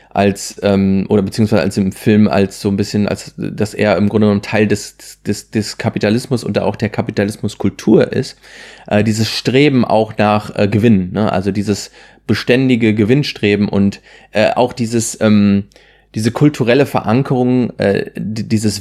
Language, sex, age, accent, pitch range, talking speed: German, male, 30-49, German, 100-115 Hz, 155 wpm